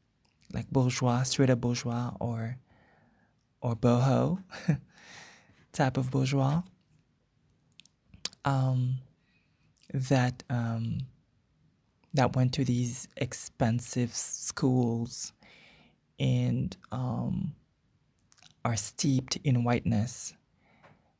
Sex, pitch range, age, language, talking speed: male, 115-135 Hz, 20-39, English, 70 wpm